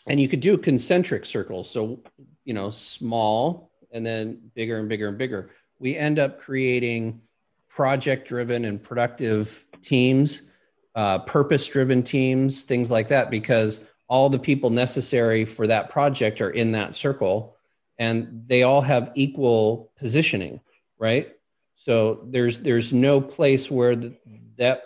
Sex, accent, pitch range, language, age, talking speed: male, American, 110-135 Hz, English, 40-59, 140 wpm